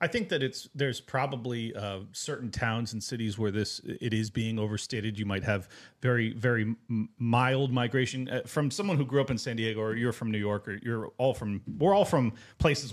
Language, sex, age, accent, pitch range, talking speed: English, male, 30-49, American, 120-160 Hz, 220 wpm